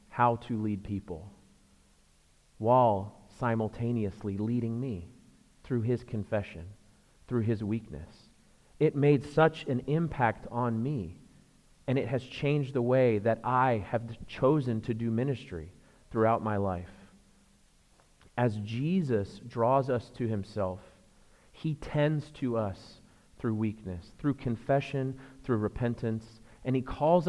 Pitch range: 105-140 Hz